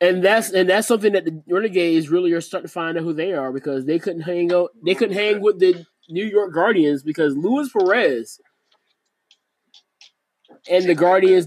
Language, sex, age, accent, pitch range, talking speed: English, male, 20-39, American, 150-195 Hz, 190 wpm